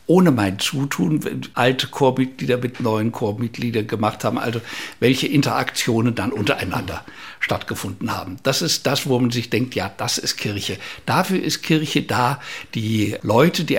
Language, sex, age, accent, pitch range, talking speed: German, male, 60-79, German, 110-145 Hz, 155 wpm